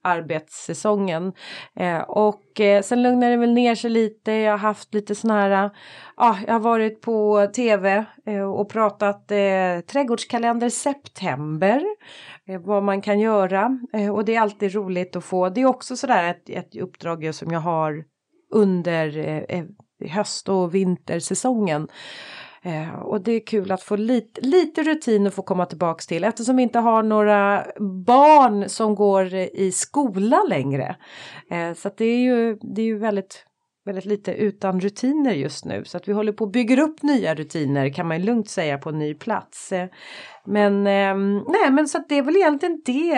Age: 30-49